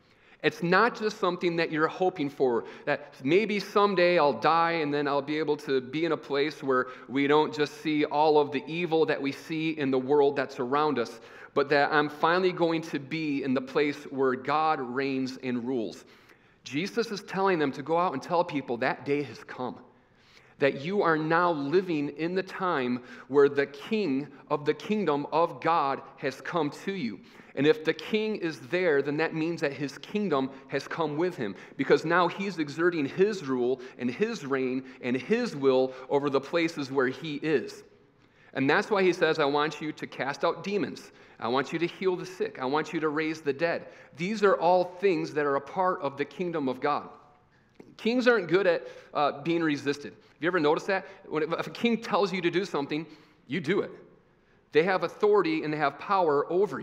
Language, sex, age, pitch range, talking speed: English, male, 40-59, 140-180 Hz, 205 wpm